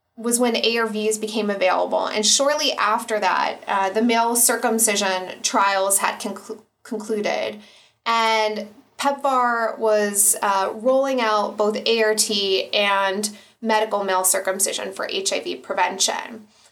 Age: 20-39